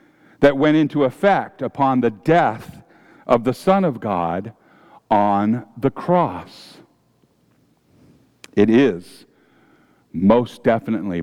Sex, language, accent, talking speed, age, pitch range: male, English, American, 100 wpm, 50-69, 120-185 Hz